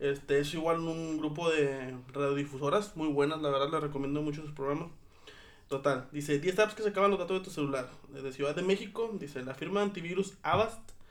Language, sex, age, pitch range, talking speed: English, male, 20-39, 145-185 Hz, 200 wpm